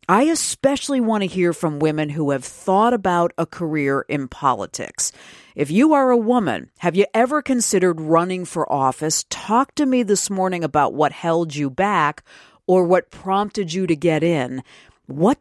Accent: American